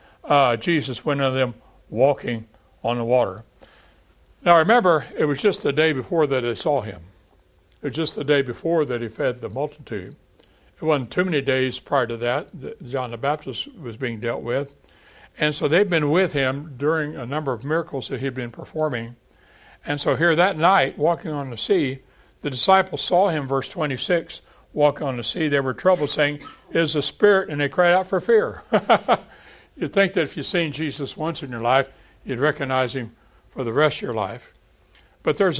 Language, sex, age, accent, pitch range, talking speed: English, male, 60-79, American, 125-155 Hz, 200 wpm